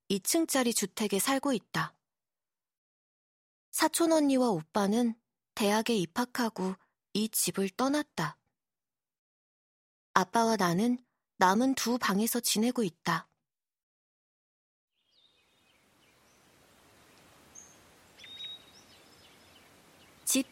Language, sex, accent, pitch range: Korean, female, native, 195-270 Hz